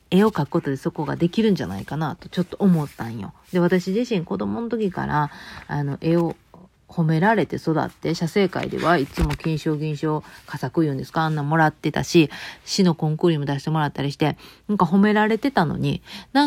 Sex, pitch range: female, 155-210 Hz